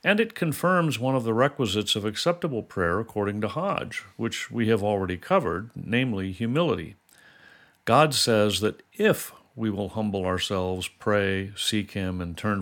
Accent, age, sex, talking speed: American, 50-69, male, 155 wpm